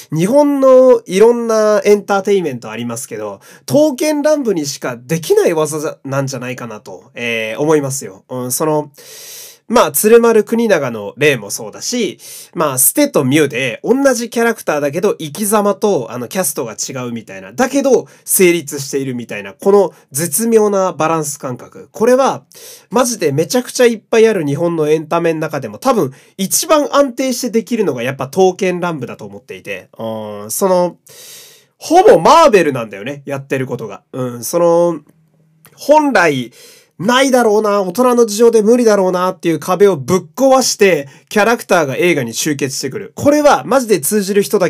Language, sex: Japanese, male